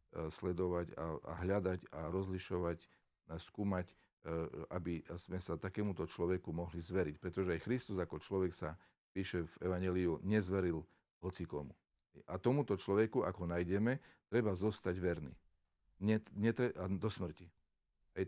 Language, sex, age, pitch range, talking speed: Slovak, male, 50-69, 85-105 Hz, 130 wpm